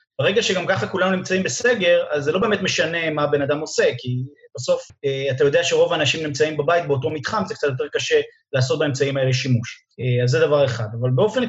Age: 30-49